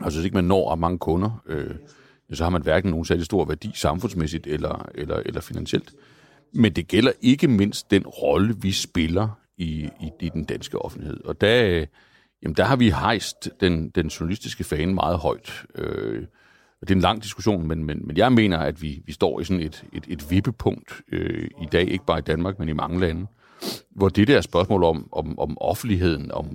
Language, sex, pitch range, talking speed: Danish, male, 80-100 Hz, 210 wpm